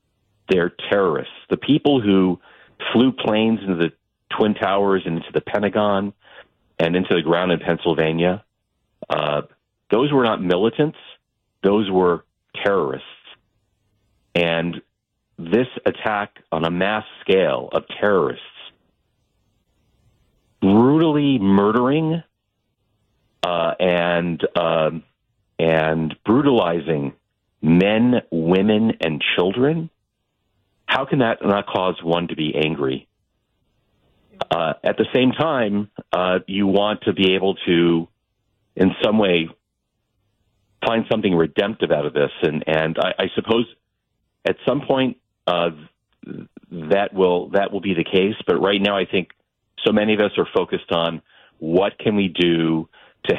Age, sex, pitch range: 40-59, male, 85-110 Hz